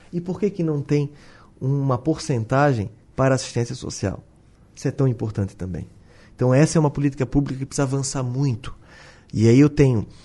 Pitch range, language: 115-170 Hz, Portuguese